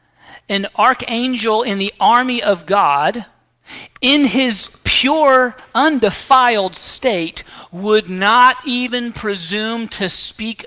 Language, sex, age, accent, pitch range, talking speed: English, male, 40-59, American, 160-220 Hz, 100 wpm